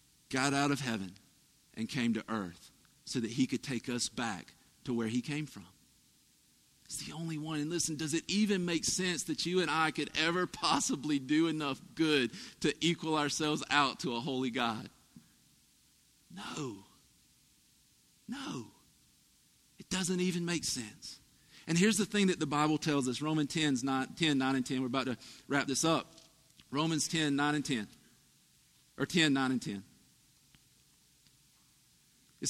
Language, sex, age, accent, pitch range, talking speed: English, male, 50-69, American, 130-160 Hz, 160 wpm